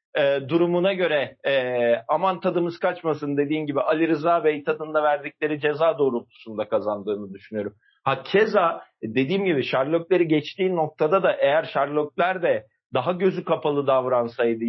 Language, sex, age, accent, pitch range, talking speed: Turkish, male, 40-59, native, 135-170 Hz, 135 wpm